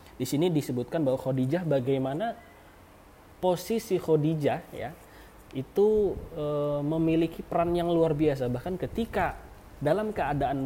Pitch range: 130-180 Hz